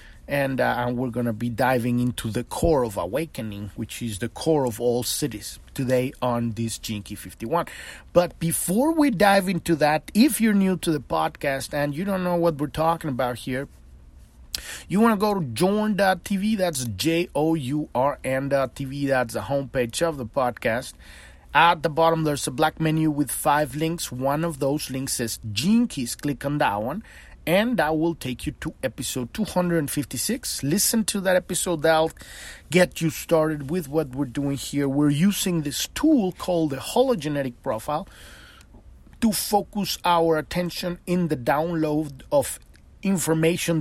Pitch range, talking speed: 130-175 Hz, 160 wpm